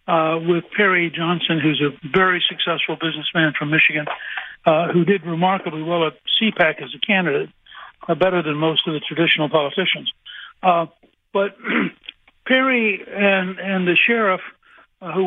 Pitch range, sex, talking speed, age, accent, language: 170-205 Hz, male, 150 wpm, 60-79, American, English